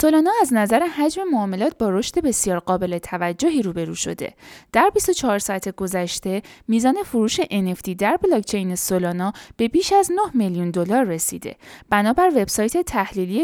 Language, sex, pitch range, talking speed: Persian, female, 185-280 Hz, 145 wpm